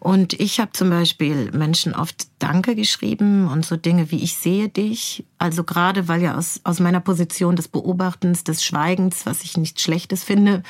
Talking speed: 185 wpm